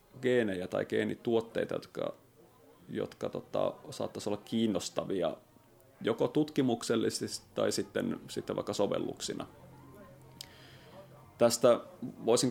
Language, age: Finnish, 30-49